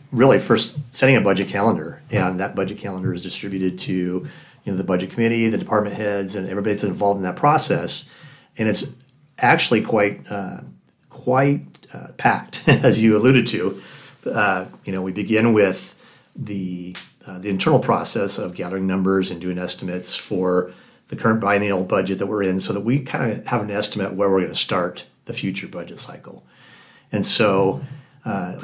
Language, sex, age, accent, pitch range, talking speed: English, male, 40-59, American, 95-115 Hz, 180 wpm